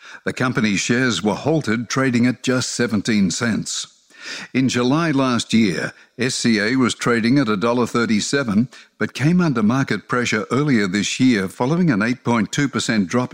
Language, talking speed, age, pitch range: English, 140 wpm, 60-79, 105-135 Hz